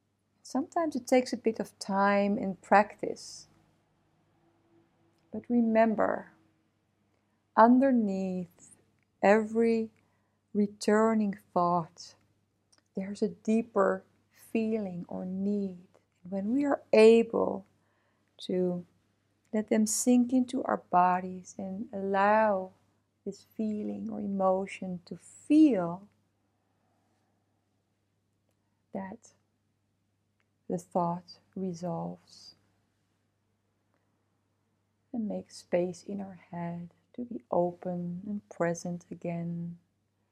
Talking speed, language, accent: 85 wpm, English, Dutch